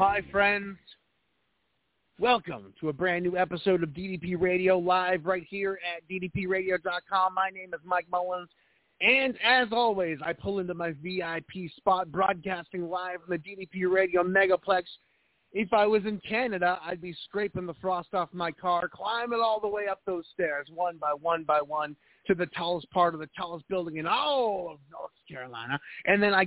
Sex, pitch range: male, 165-195 Hz